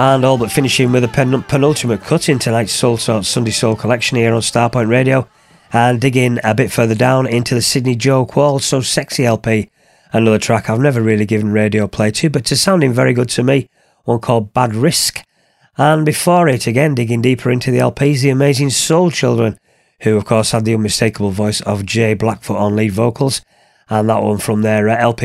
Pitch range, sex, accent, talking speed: 110-140 Hz, male, British, 200 wpm